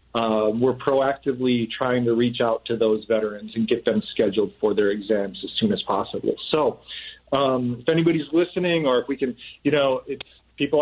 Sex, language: male, English